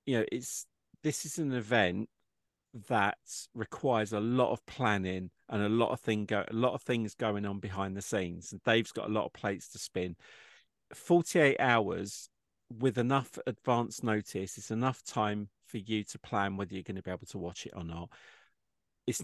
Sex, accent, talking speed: male, British, 195 wpm